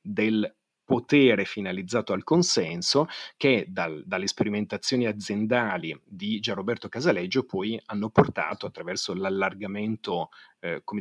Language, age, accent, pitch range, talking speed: Italian, 40-59, native, 100-130 Hz, 100 wpm